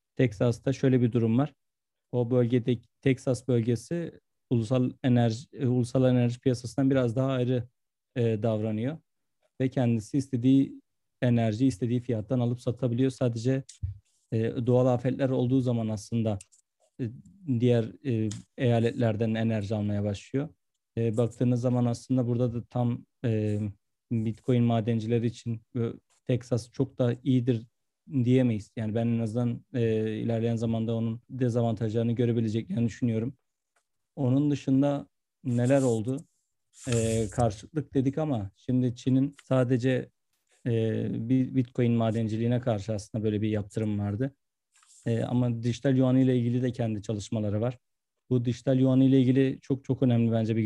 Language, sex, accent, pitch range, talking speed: Turkish, male, native, 115-130 Hz, 130 wpm